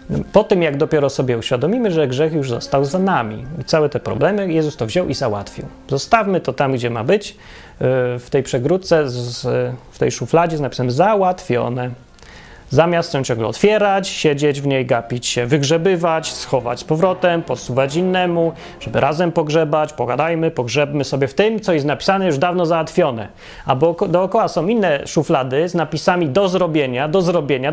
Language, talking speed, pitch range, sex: Polish, 160 wpm, 140-185 Hz, male